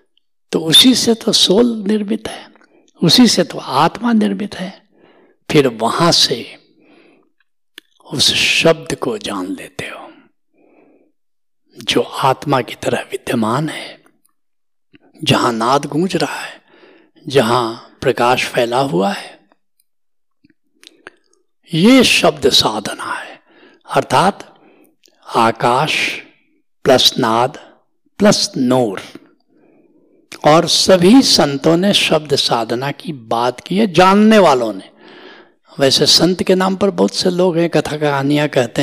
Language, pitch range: Hindi, 140-225 Hz